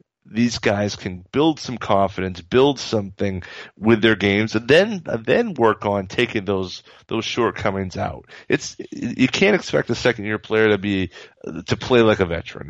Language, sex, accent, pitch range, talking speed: English, male, American, 95-120 Hz, 175 wpm